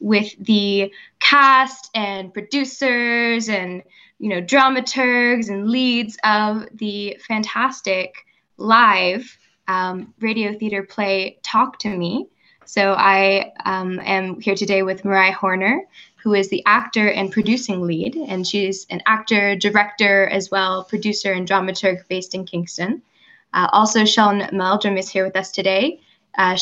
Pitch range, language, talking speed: 185-230 Hz, English, 135 wpm